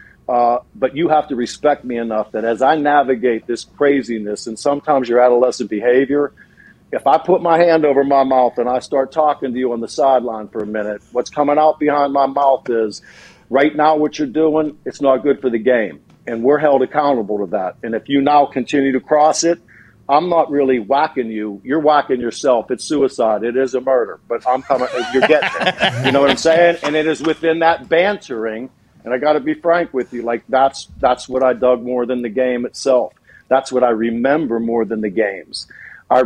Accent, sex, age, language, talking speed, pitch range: American, male, 50-69, English, 215 wpm, 115-145 Hz